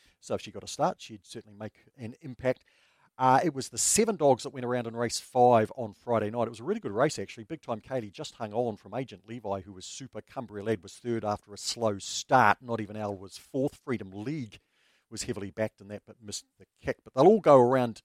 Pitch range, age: 105-125 Hz, 50-69